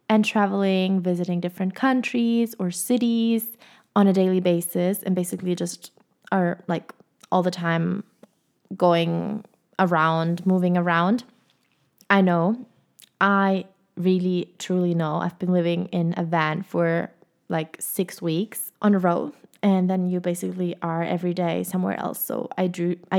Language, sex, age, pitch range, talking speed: English, female, 20-39, 175-210 Hz, 140 wpm